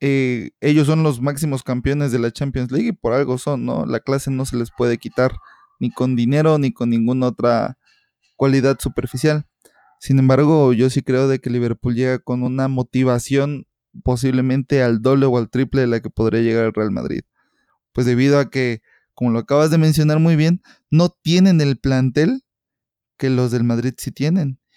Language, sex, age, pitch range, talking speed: Spanish, male, 20-39, 125-140 Hz, 190 wpm